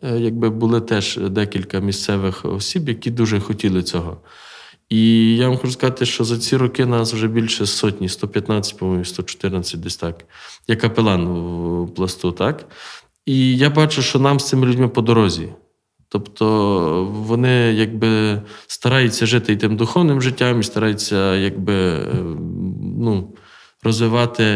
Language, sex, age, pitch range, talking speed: Ukrainian, male, 20-39, 105-135 Hz, 140 wpm